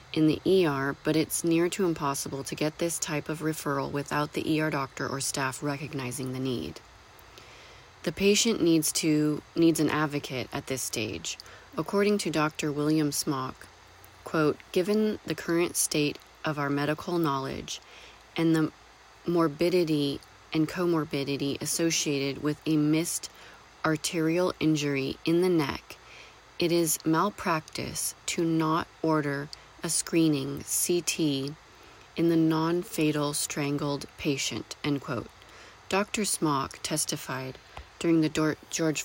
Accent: American